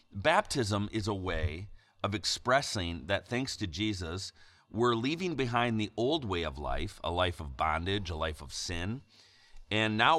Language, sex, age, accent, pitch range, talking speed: English, male, 40-59, American, 90-110 Hz, 165 wpm